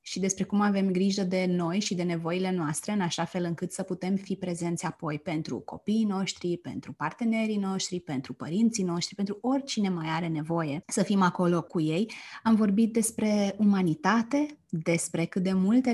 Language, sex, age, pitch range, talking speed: Romanian, female, 20-39, 175-215 Hz, 175 wpm